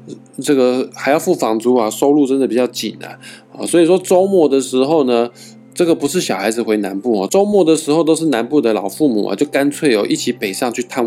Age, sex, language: 20-39, male, Chinese